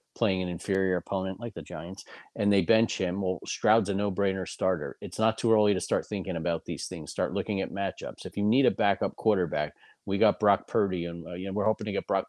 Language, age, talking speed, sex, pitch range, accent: English, 40-59, 235 wpm, male, 90-110 Hz, American